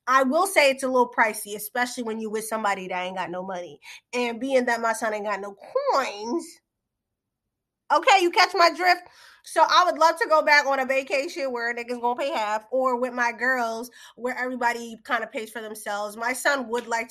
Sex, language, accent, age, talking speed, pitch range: female, English, American, 20-39, 220 wpm, 210-275 Hz